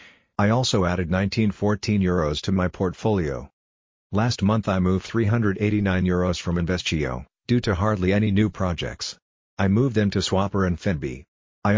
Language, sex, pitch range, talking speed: English, male, 90-105 Hz, 155 wpm